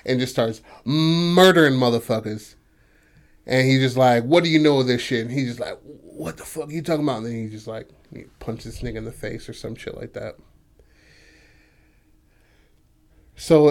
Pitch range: 115-130 Hz